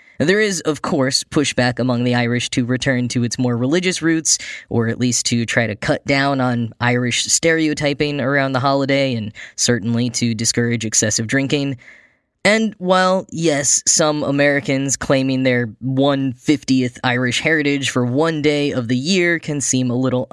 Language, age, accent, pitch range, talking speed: English, 10-29, American, 125-160 Hz, 160 wpm